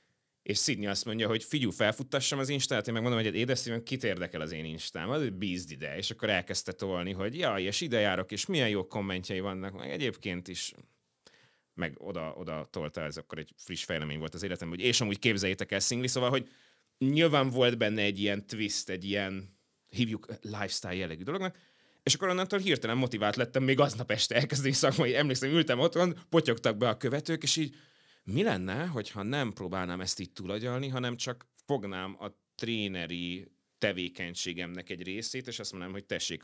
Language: Hungarian